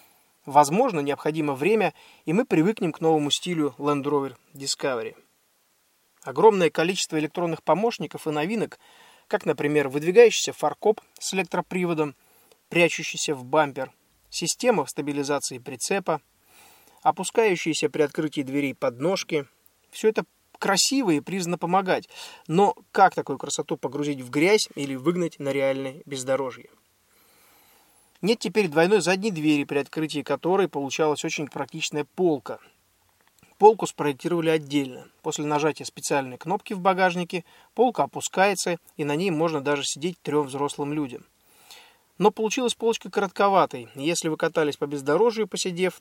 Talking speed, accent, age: 125 wpm, native, 20-39